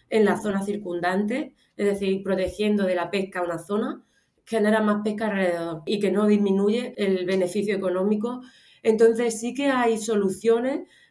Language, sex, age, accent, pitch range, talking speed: Spanish, female, 20-39, Spanish, 185-220 Hz, 155 wpm